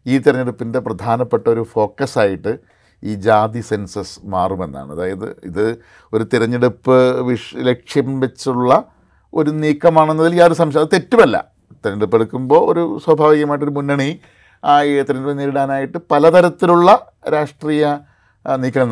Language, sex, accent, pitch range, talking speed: Malayalam, male, native, 110-150 Hz, 95 wpm